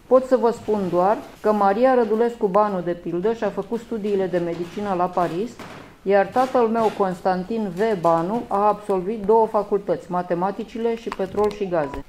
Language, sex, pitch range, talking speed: English, female, 190-225 Hz, 165 wpm